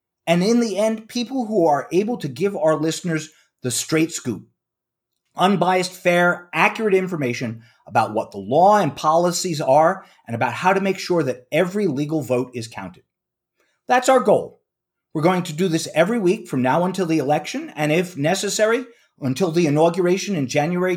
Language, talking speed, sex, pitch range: English, 175 wpm, male, 145-195 Hz